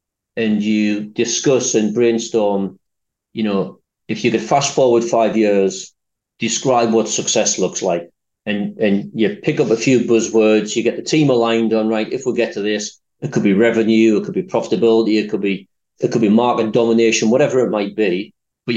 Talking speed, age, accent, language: 190 wpm, 40-59, British, English